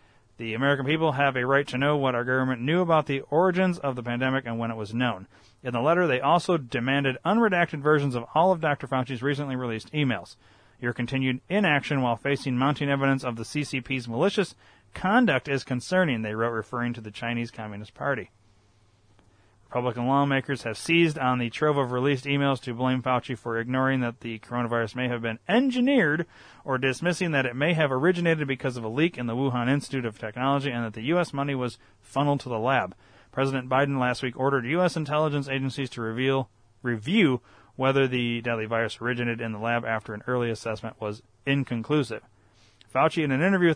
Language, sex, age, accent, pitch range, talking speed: English, male, 30-49, American, 115-145 Hz, 190 wpm